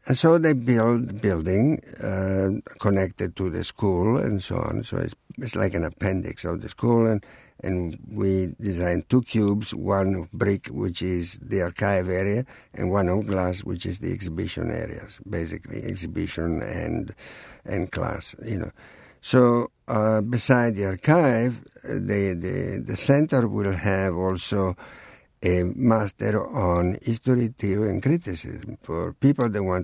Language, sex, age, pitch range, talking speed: English, male, 60-79, 95-120 Hz, 150 wpm